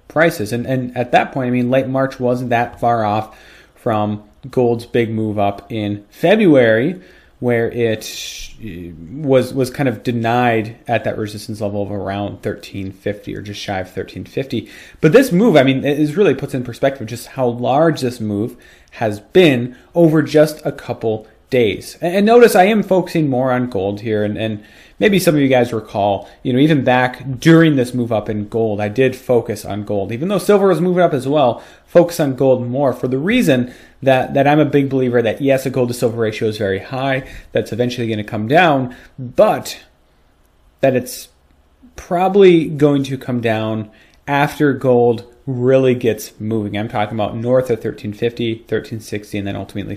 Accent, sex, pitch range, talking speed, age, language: American, male, 110-140 Hz, 185 wpm, 30-49, English